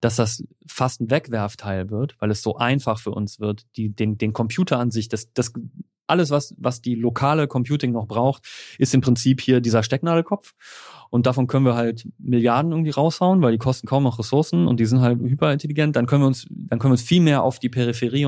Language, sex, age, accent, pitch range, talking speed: German, male, 30-49, German, 110-130 Hz, 220 wpm